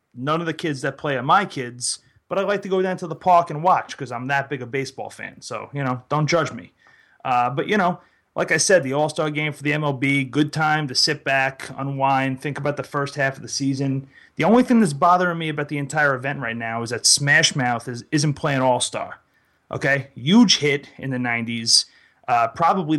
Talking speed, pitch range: 225 wpm, 130-160 Hz